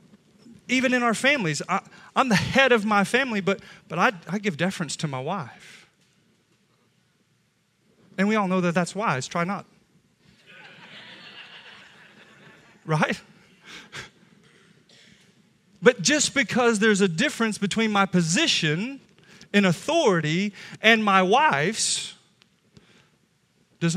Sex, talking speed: male, 110 wpm